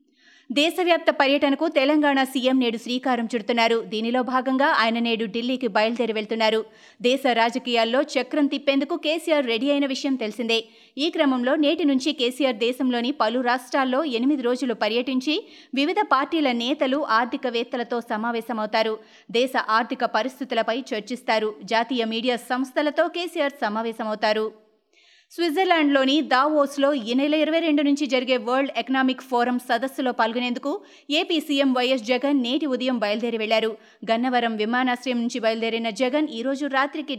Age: 30-49